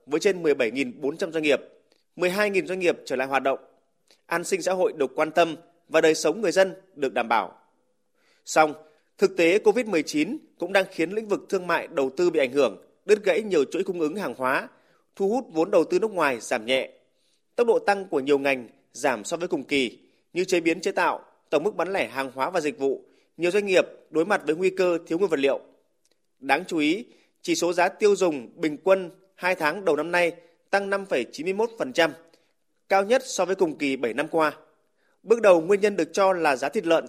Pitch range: 155-200 Hz